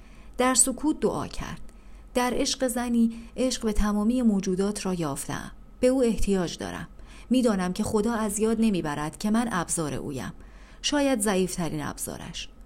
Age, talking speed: 40-59, 145 wpm